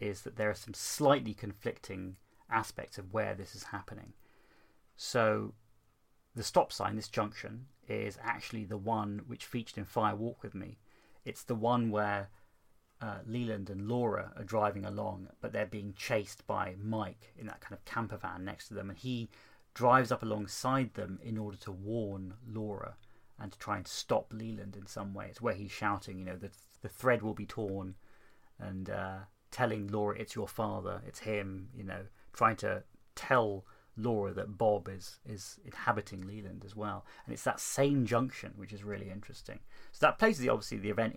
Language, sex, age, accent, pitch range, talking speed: English, male, 30-49, British, 100-115 Hz, 185 wpm